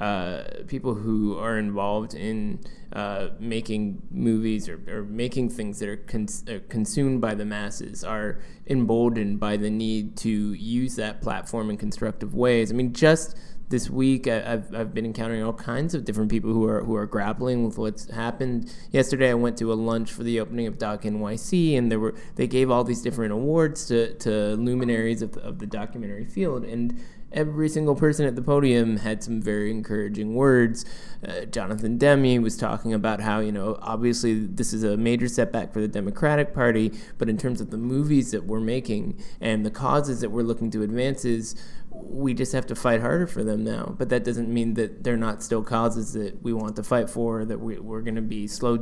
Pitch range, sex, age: 110-125 Hz, male, 20-39